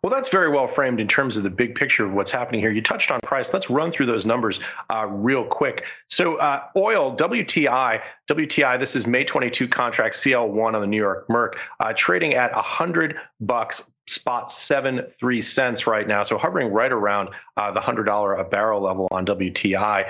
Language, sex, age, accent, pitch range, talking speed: English, male, 40-59, American, 105-125 Hz, 195 wpm